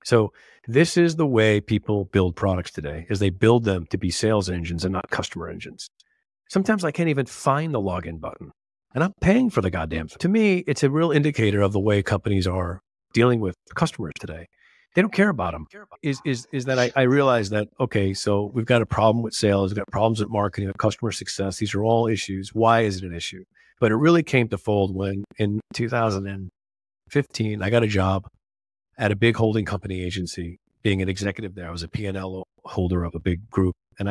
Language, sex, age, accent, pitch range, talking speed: English, male, 50-69, American, 95-115 Hz, 215 wpm